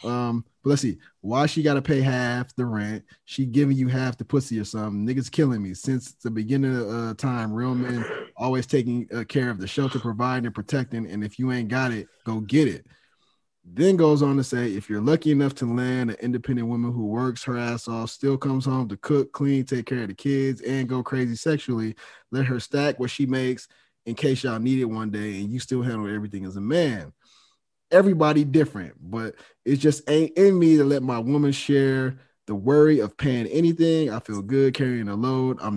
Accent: American